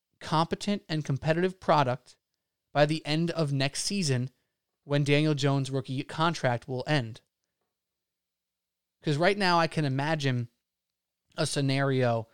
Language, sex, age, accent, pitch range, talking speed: English, male, 20-39, American, 125-150 Hz, 120 wpm